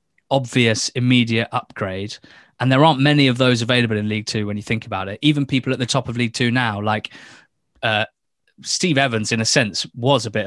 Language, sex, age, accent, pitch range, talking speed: English, male, 20-39, British, 110-130 Hz, 210 wpm